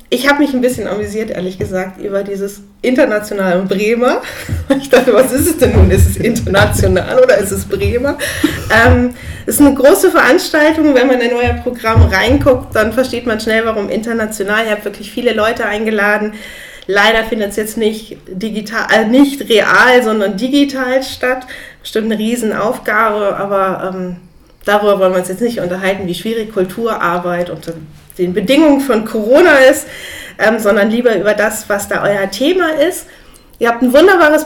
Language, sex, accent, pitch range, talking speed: German, female, German, 205-260 Hz, 175 wpm